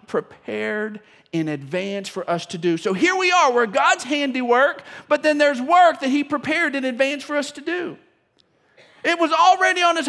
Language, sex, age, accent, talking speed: English, male, 40-59, American, 190 wpm